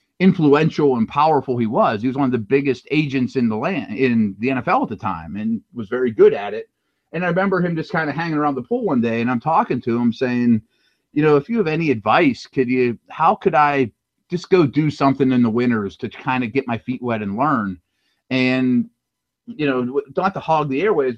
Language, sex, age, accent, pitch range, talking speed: English, male, 30-49, American, 125-155 Hz, 230 wpm